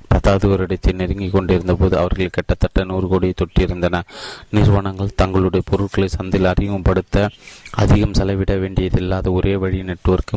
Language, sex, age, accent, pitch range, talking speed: Tamil, male, 30-49, native, 90-100 Hz, 120 wpm